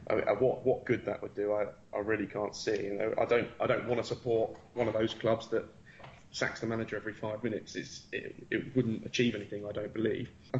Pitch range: 110-125 Hz